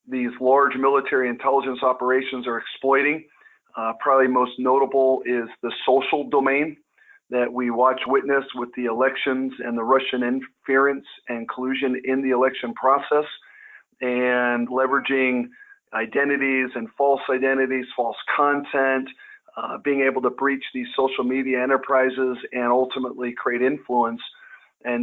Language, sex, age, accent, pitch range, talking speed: English, male, 40-59, American, 125-140 Hz, 130 wpm